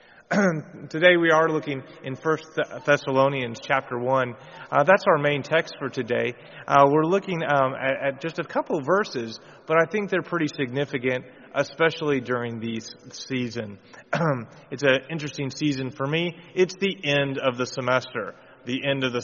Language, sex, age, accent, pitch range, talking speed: English, male, 30-49, American, 135-195 Hz, 170 wpm